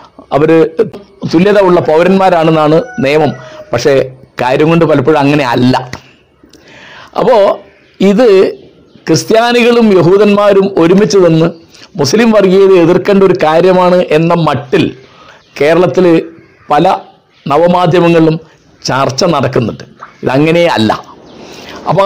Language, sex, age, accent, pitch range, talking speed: Malayalam, male, 50-69, native, 160-200 Hz, 80 wpm